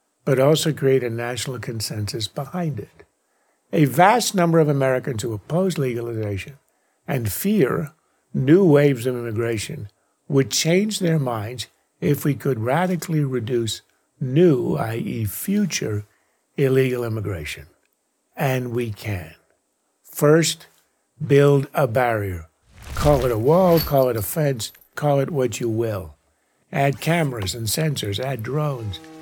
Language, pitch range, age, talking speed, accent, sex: English, 110-150 Hz, 50-69, 125 wpm, American, male